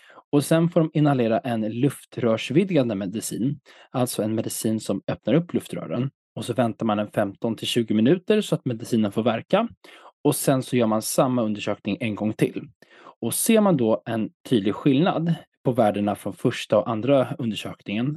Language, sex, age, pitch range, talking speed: Swedish, male, 20-39, 110-145 Hz, 170 wpm